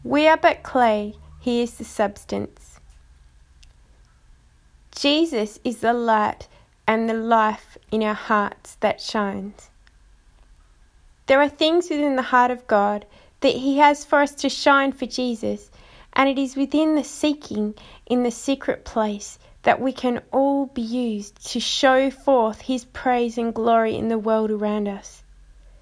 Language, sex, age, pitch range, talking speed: English, female, 20-39, 195-260 Hz, 150 wpm